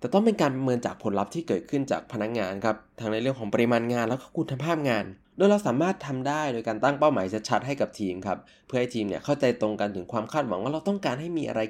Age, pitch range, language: 20-39, 105-145 Hz, Thai